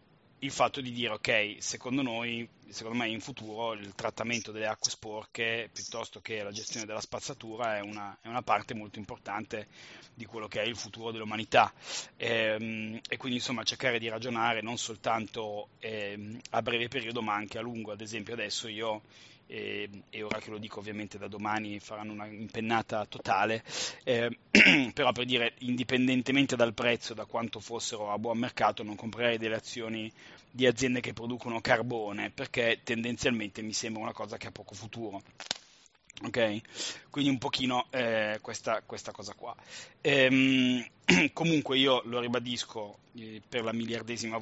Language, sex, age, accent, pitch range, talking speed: Italian, male, 30-49, native, 110-125 Hz, 160 wpm